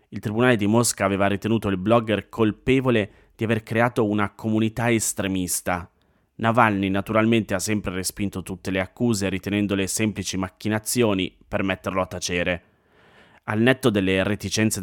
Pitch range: 100-115 Hz